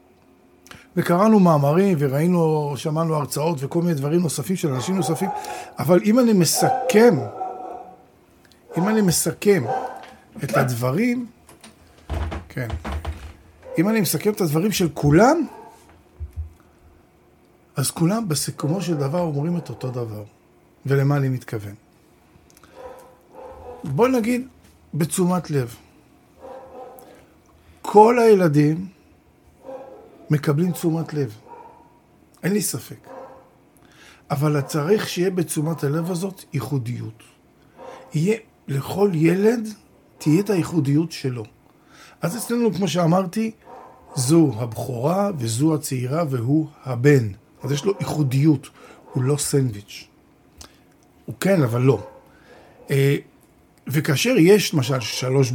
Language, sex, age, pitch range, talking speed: Hebrew, male, 50-69, 135-190 Hz, 100 wpm